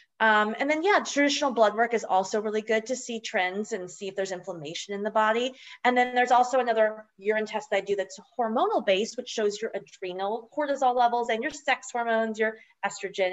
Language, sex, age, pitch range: English, female, 30-49, 185-250 Hz